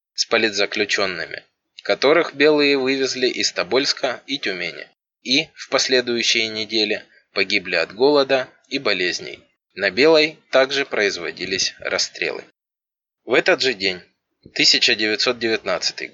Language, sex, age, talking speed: Russian, male, 20-39, 105 wpm